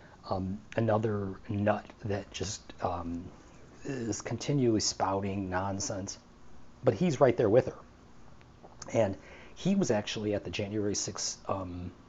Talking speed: 125 wpm